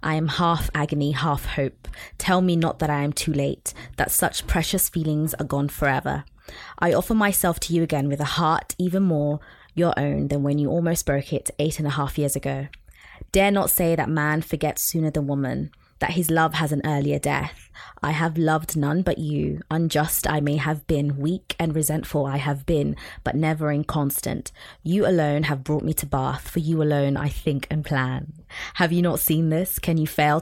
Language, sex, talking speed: English, female, 205 wpm